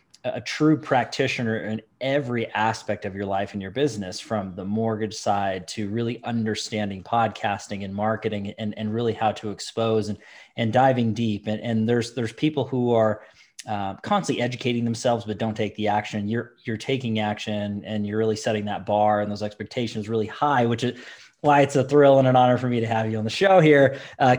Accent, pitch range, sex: American, 110-135 Hz, male